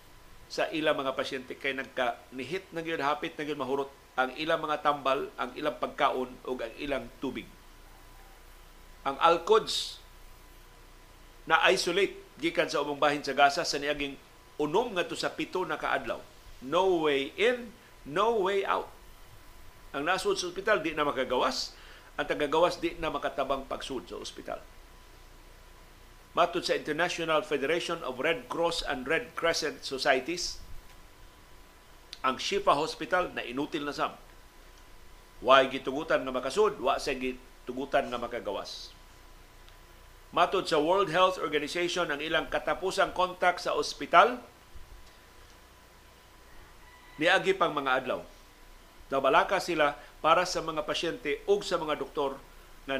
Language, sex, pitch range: Filipino, male, 130-180 Hz